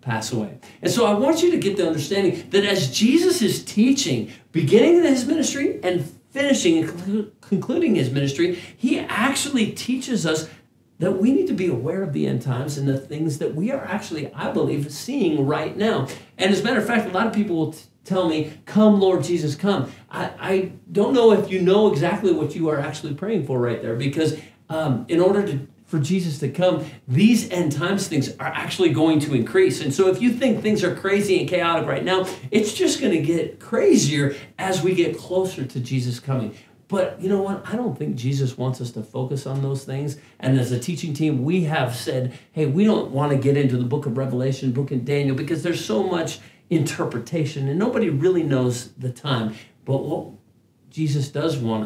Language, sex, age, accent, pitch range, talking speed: English, male, 40-59, American, 135-195 Hz, 210 wpm